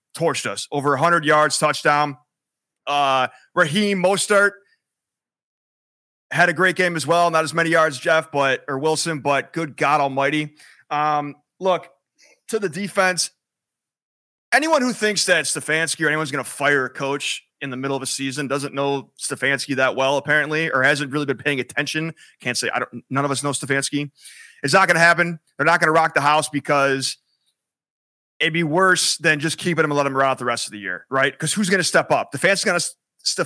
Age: 30-49